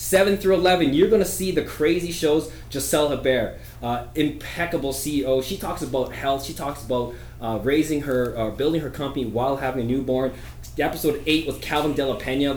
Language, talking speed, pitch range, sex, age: English, 180 wpm, 125-170 Hz, male, 20-39